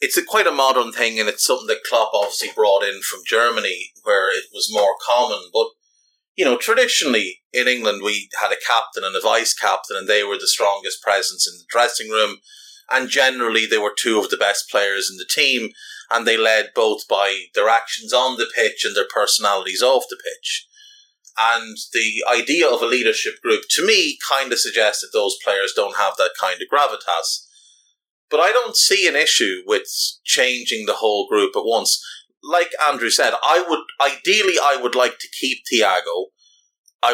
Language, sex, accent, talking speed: English, male, Irish, 190 wpm